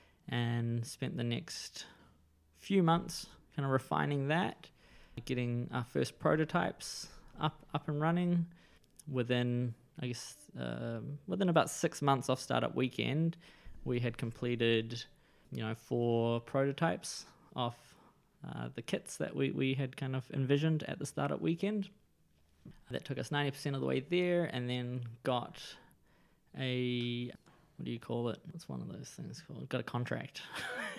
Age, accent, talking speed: 20-39, Australian, 150 wpm